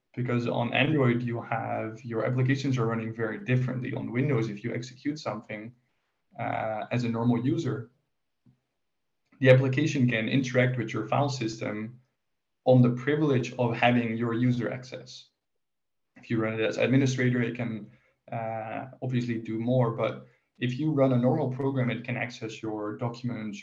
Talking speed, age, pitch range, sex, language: 155 wpm, 20-39, 115-130 Hz, male, English